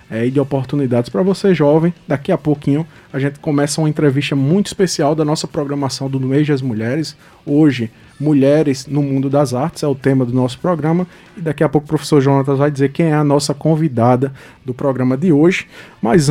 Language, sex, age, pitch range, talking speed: Portuguese, male, 20-39, 135-165 Hz, 205 wpm